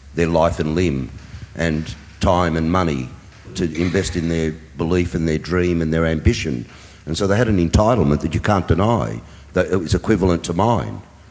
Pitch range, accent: 80-95 Hz, Australian